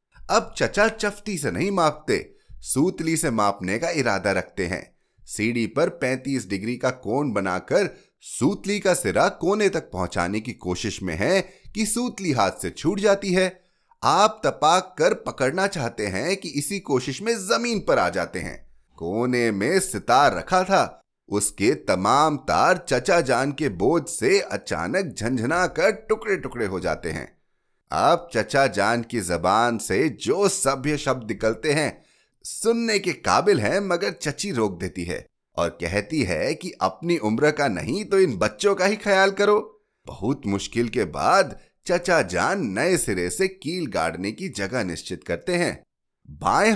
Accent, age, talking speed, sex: native, 30-49, 160 wpm, male